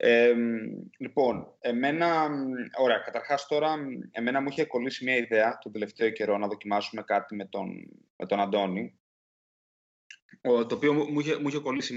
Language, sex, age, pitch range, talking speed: Greek, male, 20-39, 125-165 Hz, 135 wpm